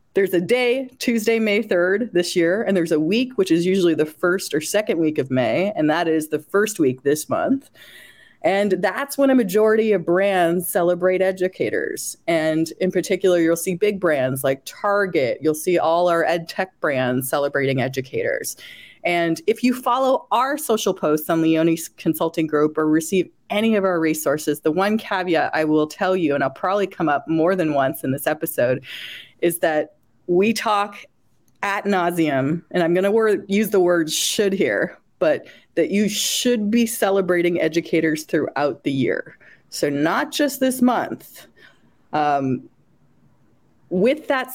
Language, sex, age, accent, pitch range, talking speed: English, female, 30-49, American, 160-215 Hz, 170 wpm